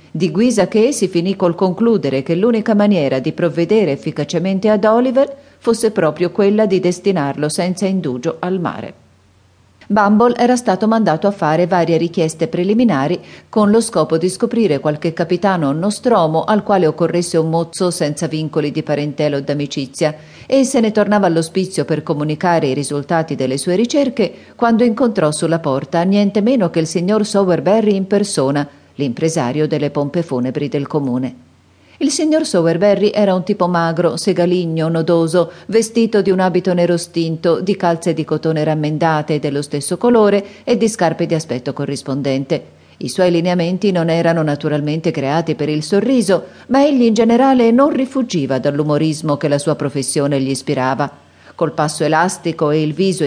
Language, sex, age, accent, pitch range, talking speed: Italian, female, 40-59, native, 150-205 Hz, 160 wpm